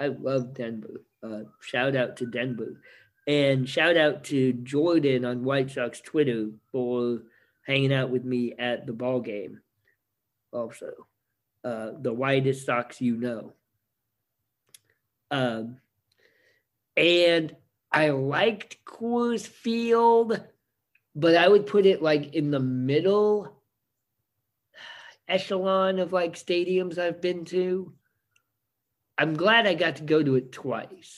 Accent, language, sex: American, English, male